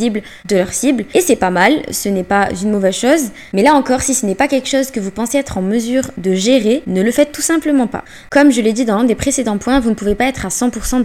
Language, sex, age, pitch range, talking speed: French, female, 20-39, 210-260 Hz, 280 wpm